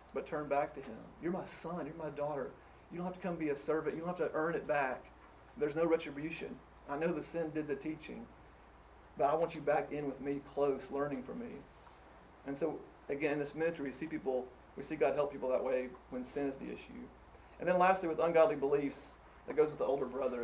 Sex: male